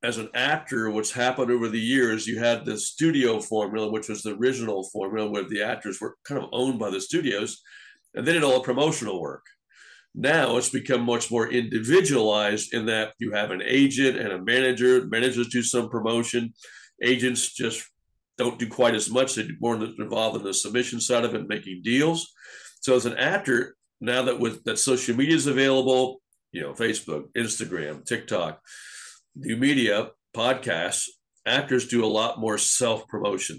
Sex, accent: male, American